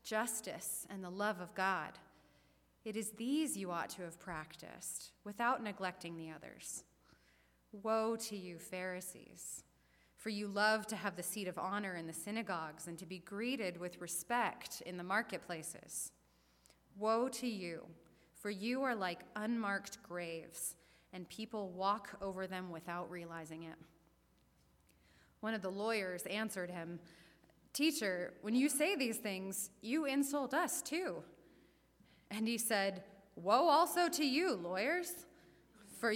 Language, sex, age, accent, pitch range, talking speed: English, female, 20-39, American, 175-250 Hz, 140 wpm